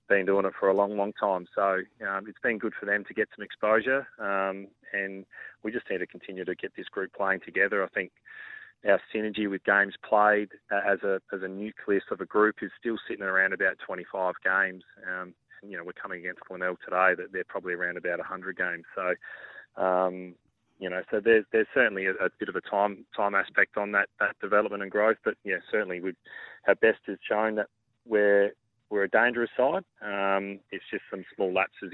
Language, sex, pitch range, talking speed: English, male, 95-105 Hz, 210 wpm